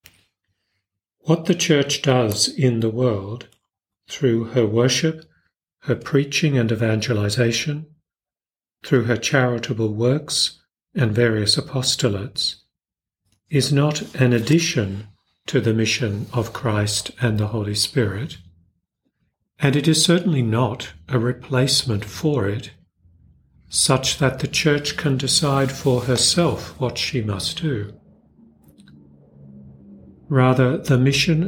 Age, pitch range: 50-69, 110-140 Hz